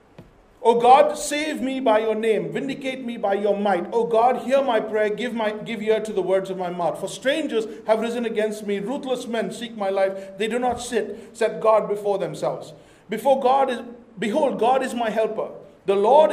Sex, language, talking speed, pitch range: male, English, 205 wpm, 210-265 Hz